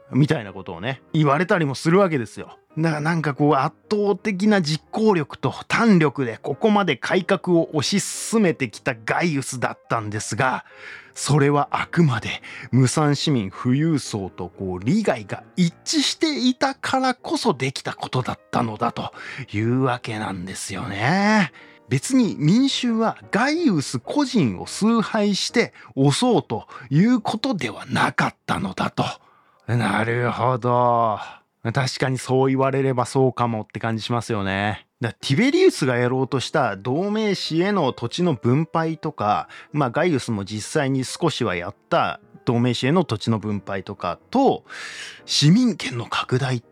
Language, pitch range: Japanese, 120-185 Hz